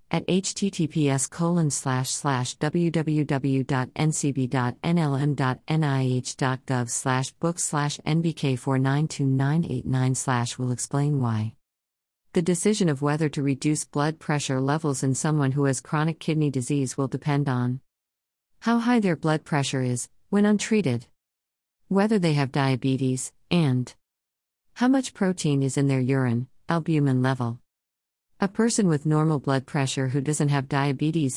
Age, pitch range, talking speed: 50-69, 125-155 Hz, 120 wpm